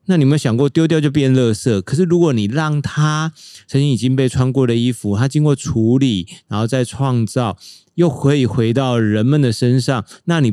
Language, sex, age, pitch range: Chinese, male, 30-49, 110-150 Hz